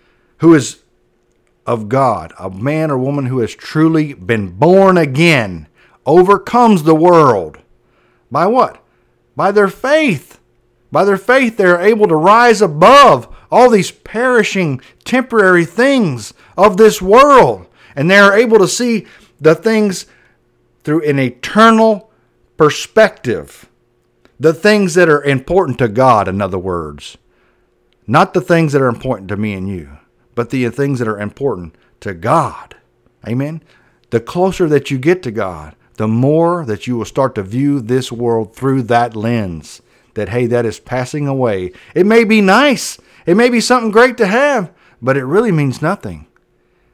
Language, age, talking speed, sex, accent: English, 50-69, 155 wpm, male, American